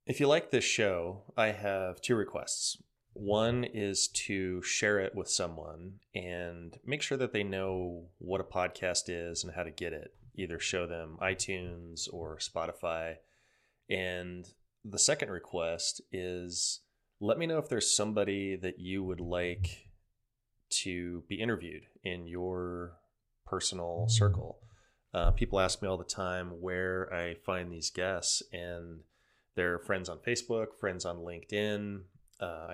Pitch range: 85-100 Hz